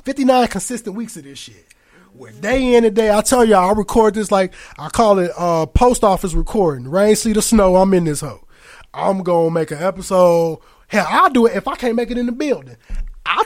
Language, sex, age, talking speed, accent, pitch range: English, male, 20-39, 230 wpm, American, 180-245 Hz